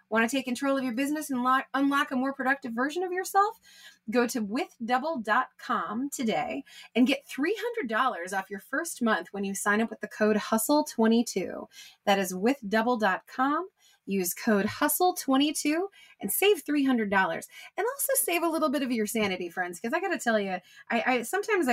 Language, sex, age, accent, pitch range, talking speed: English, female, 20-39, American, 215-310 Hz, 175 wpm